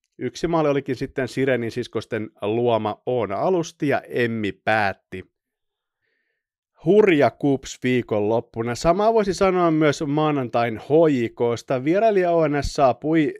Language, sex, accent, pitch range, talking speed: Finnish, male, native, 115-155 Hz, 110 wpm